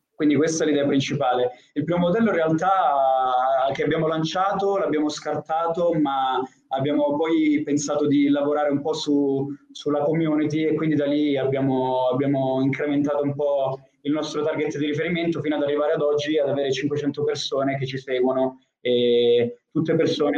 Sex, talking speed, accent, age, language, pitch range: male, 160 wpm, native, 20-39, Italian, 130-150 Hz